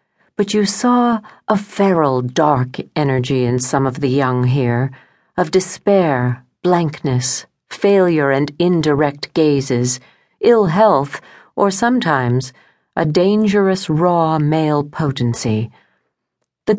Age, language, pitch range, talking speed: 50-69, English, 130-185 Hz, 105 wpm